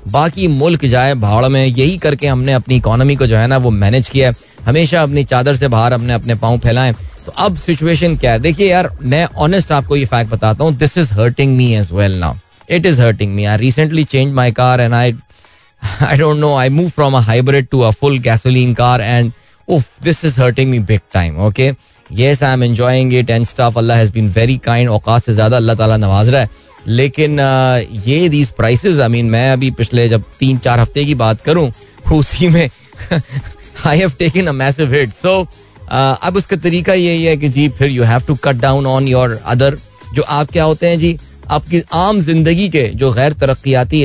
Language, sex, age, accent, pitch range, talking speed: Hindi, male, 20-39, native, 115-150 Hz, 175 wpm